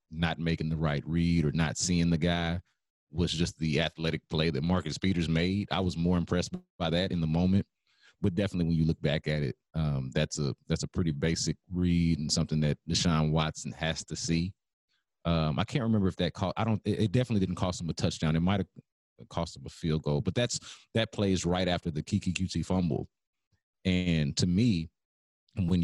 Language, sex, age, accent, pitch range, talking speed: English, male, 30-49, American, 80-95 Hz, 205 wpm